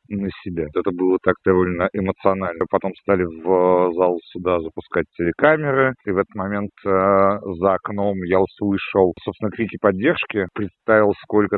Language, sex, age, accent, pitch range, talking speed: Russian, male, 40-59, native, 90-100 Hz, 145 wpm